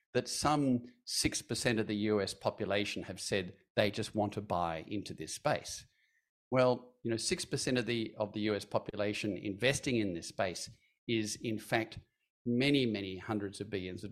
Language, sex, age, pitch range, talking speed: English, male, 50-69, 95-120 Hz, 180 wpm